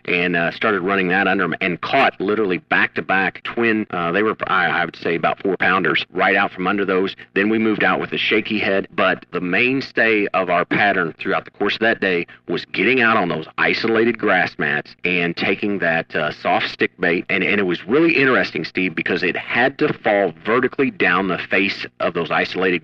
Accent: American